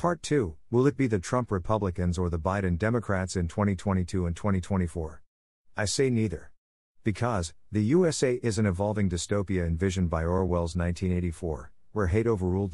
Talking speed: 155 wpm